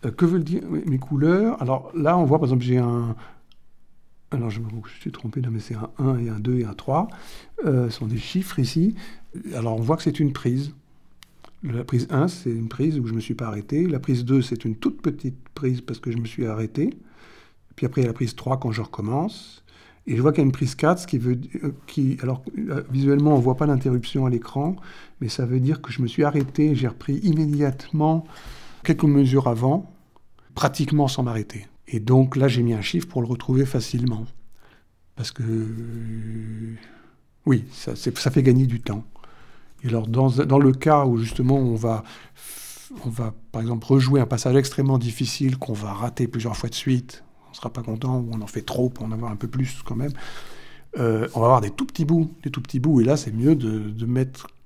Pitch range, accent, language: 115-145 Hz, French, French